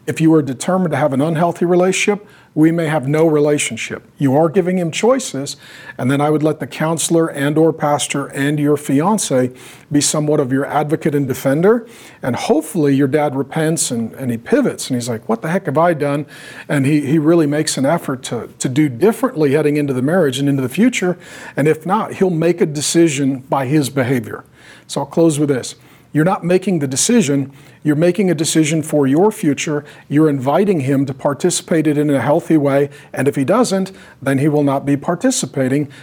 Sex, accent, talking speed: male, American, 205 wpm